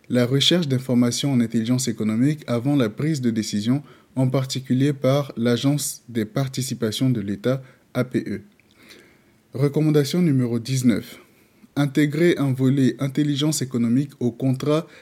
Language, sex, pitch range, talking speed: French, male, 115-140 Hz, 120 wpm